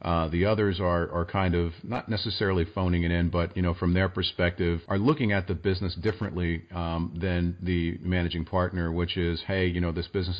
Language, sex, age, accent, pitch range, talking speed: English, male, 40-59, American, 85-100 Hz, 210 wpm